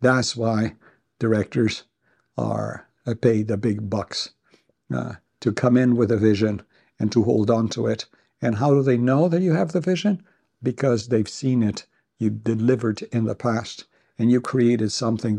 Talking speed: 170 wpm